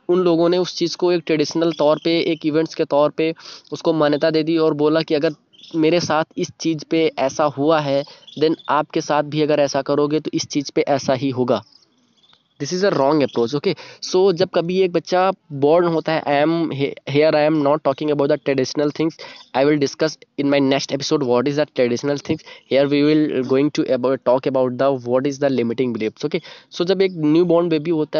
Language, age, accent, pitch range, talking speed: Hindi, 20-39, native, 140-170 Hz, 220 wpm